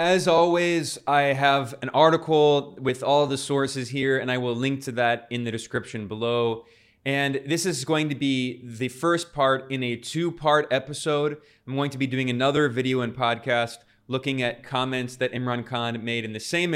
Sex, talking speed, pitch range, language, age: male, 195 wpm, 120-140 Hz, English, 20-39